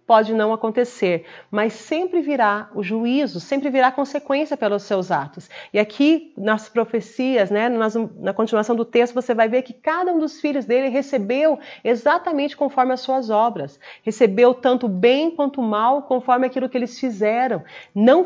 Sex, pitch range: female, 205-255 Hz